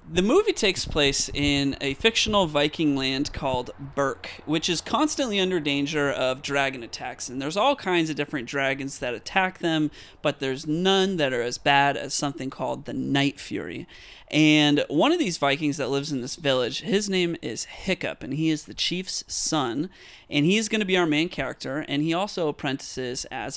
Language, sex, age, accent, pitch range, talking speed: English, male, 30-49, American, 135-165 Hz, 195 wpm